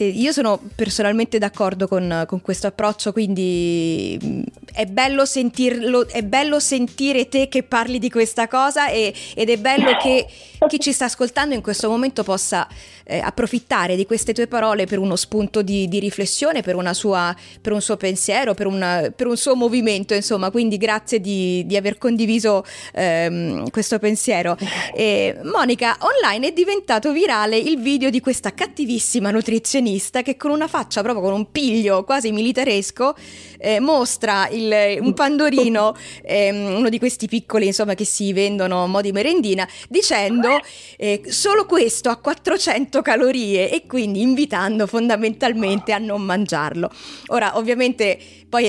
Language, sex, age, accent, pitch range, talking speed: Italian, female, 20-39, native, 200-250 Hz, 155 wpm